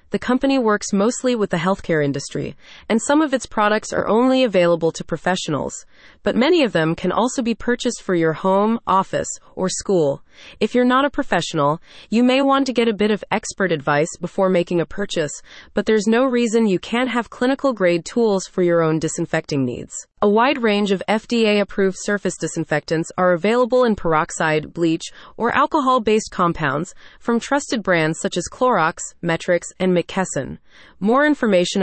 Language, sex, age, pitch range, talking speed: English, female, 20-39, 170-230 Hz, 170 wpm